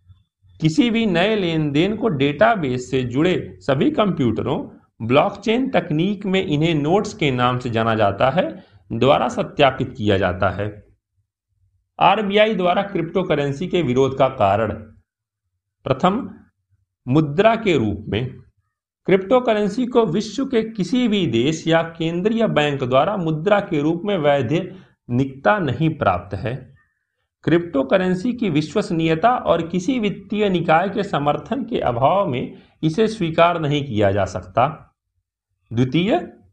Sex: male